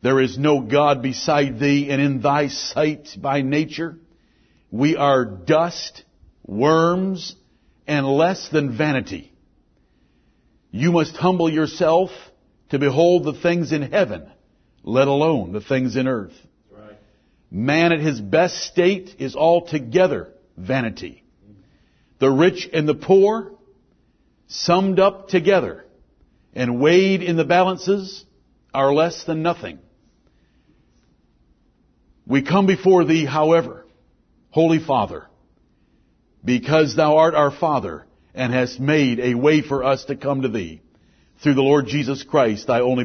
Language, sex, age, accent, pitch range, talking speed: English, male, 60-79, American, 135-165 Hz, 125 wpm